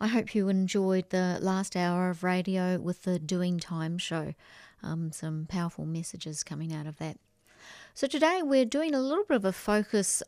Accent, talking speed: Australian, 185 wpm